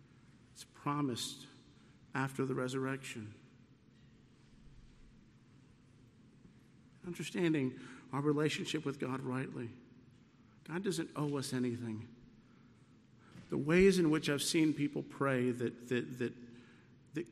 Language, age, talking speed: English, 50-69, 95 wpm